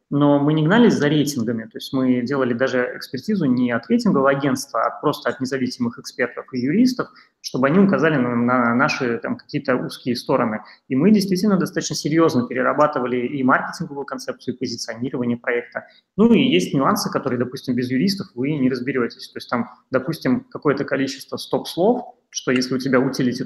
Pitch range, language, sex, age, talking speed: 125-160 Hz, Russian, male, 20-39, 170 wpm